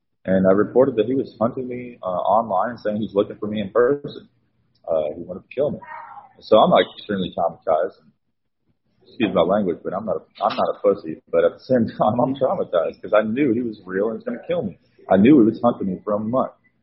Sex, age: male, 40-59